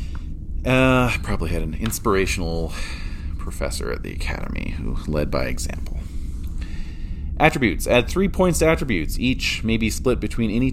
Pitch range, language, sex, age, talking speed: 75-95 Hz, English, male, 30-49, 145 wpm